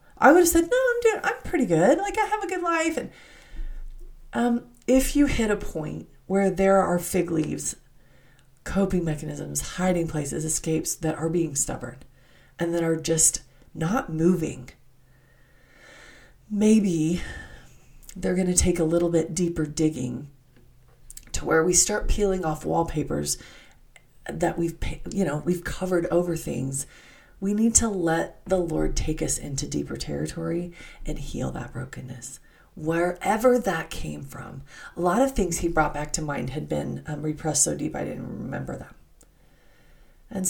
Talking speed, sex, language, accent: 160 wpm, female, English, American